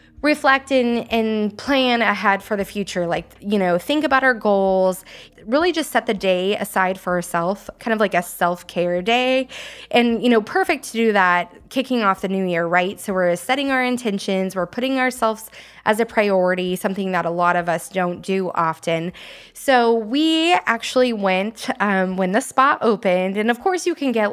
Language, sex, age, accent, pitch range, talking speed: English, female, 20-39, American, 185-235 Hz, 185 wpm